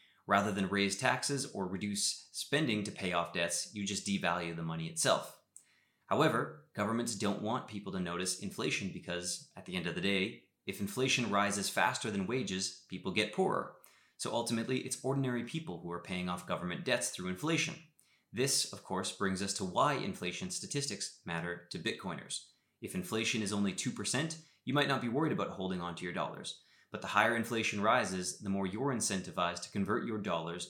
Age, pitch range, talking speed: 30-49, 90-120 Hz, 185 wpm